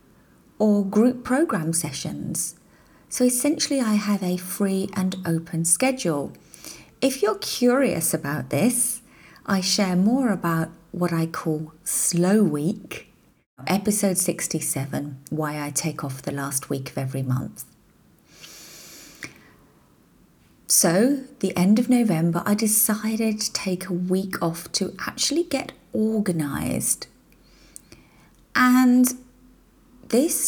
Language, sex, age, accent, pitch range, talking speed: English, female, 40-59, British, 170-235 Hz, 110 wpm